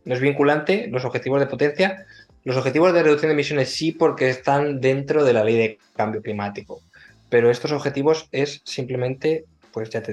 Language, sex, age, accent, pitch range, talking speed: Spanish, male, 20-39, Spanish, 120-145 Hz, 185 wpm